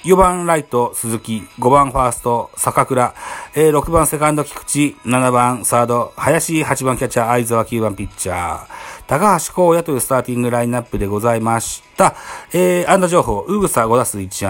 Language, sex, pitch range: Japanese, male, 110-175 Hz